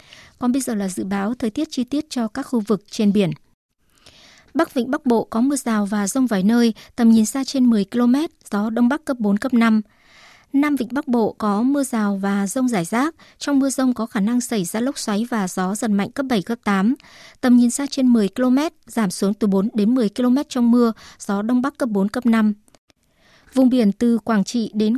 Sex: male